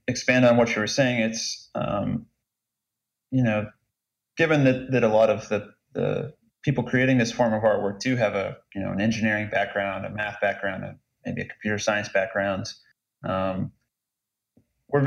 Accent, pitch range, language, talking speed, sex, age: American, 105-120 Hz, English, 170 wpm, male, 30-49